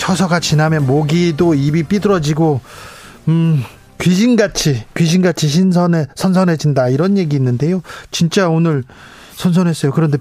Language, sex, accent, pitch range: Korean, male, native, 150-190 Hz